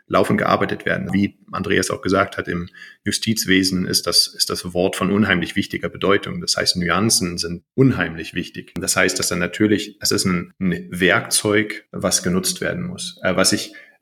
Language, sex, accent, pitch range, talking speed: German, male, German, 90-105 Hz, 175 wpm